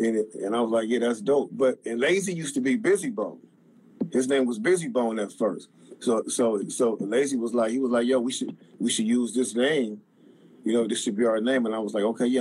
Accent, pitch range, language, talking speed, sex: American, 115-135 Hz, English, 250 wpm, male